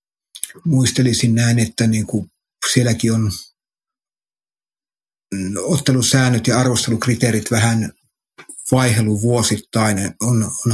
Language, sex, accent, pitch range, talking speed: Finnish, male, native, 105-120 Hz, 80 wpm